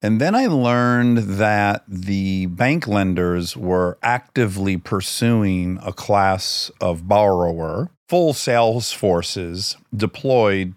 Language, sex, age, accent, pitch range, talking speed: English, male, 40-59, American, 95-135 Hz, 105 wpm